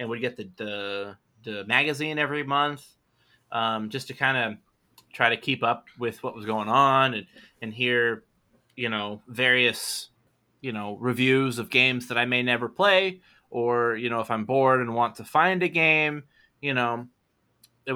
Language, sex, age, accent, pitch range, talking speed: English, male, 20-39, American, 110-130 Hz, 180 wpm